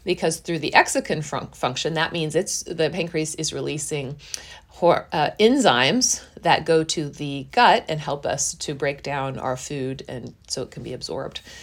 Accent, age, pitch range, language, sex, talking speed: American, 30-49, 150-190 Hz, English, female, 180 wpm